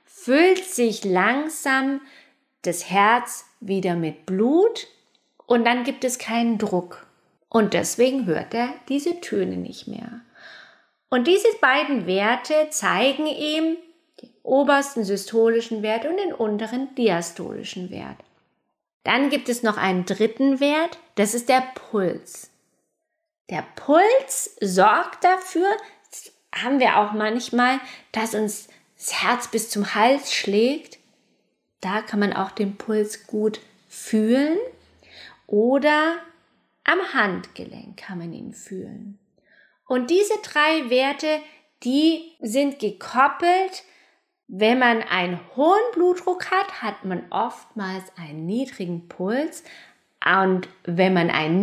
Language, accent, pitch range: German, German, 210-305 Hz